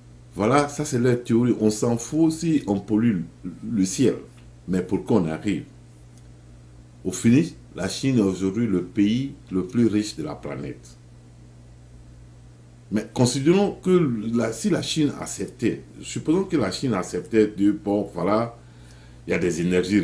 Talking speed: 155 wpm